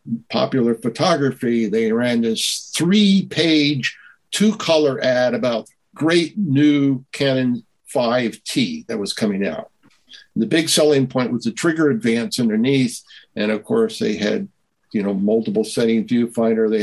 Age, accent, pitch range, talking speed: 60-79, American, 115-170 Hz, 140 wpm